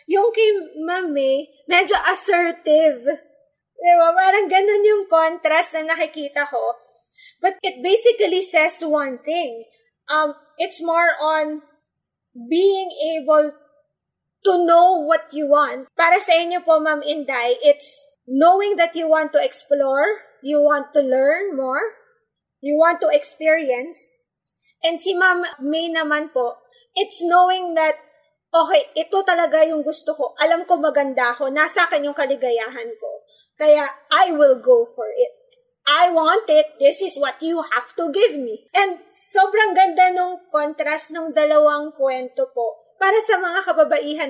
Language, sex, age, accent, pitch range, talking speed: English, female, 20-39, Filipino, 290-360 Hz, 140 wpm